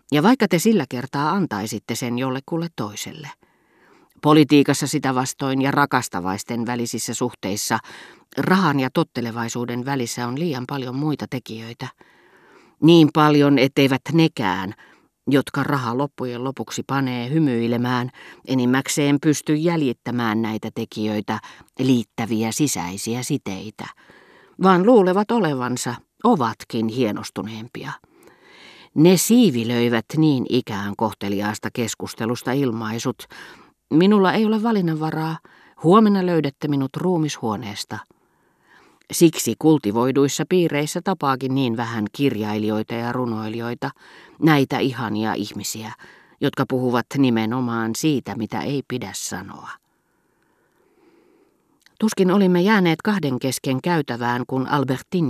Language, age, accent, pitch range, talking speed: Finnish, 40-59, native, 115-155 Hz, 100 wpm